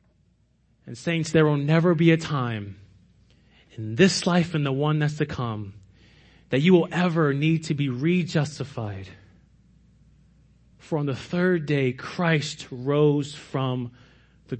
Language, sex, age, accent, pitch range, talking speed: English, male, 30-49, American, 125-185 Hz, 140 wpm